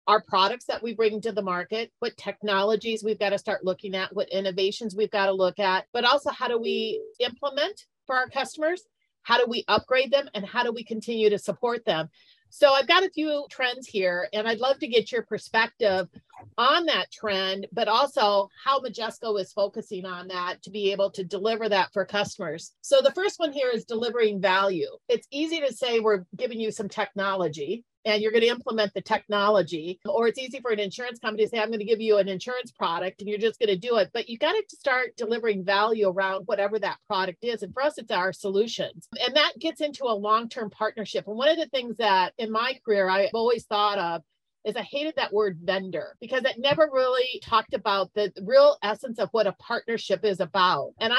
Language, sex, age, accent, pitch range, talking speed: English, female, 40-59, American, 195-245 Hz, 220 wpm